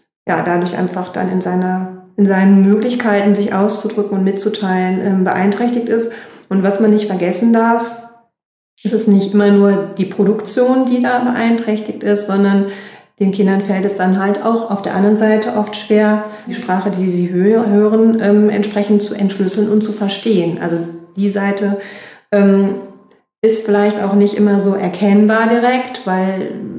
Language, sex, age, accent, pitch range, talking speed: German, female, 40-59, German, 190-215 Hz, 160 wpm